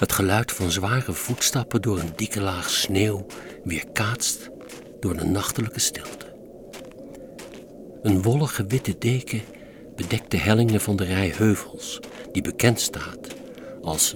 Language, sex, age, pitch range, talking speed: Dutch, male, 60-79, 100-130 Hz, 125 wpm